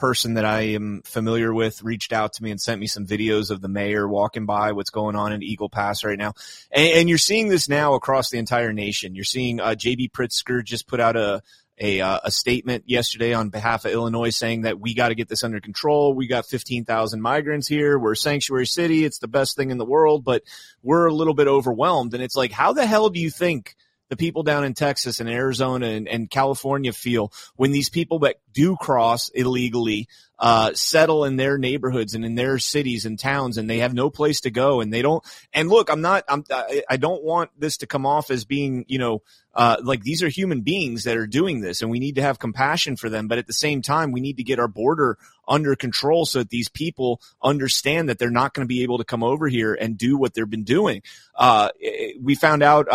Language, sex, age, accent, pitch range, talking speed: English, male, 30-49, American, 115-145 Hz, 235 wpm